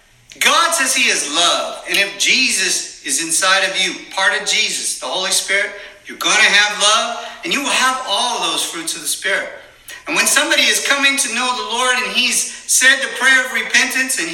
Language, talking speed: English, 210 wpm